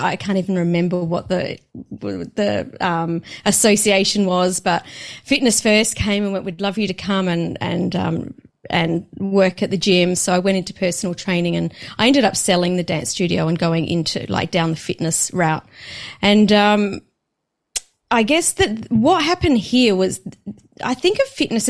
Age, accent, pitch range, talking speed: 30-49, Australian, 180-225 Hz, 175 wpm